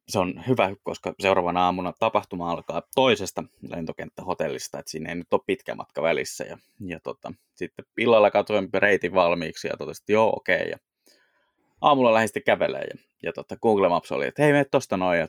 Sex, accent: male, native